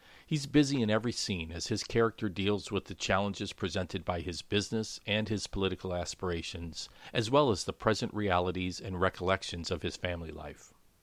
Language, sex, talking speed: English, male, 175 wpm